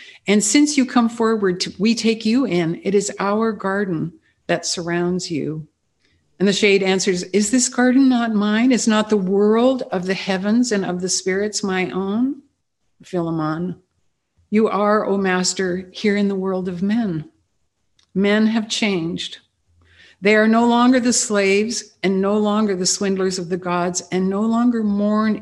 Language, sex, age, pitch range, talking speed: English, female, 60-79, 180-220 Hz, 170 wpm